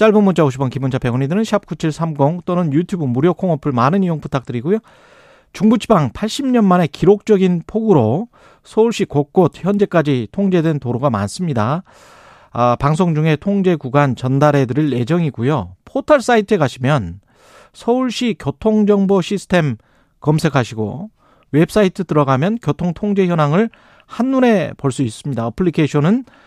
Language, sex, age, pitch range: Korean, male, 40-59, 140-200 Hz